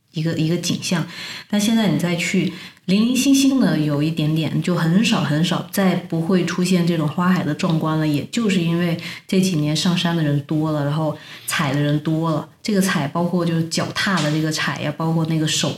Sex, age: female, 20-39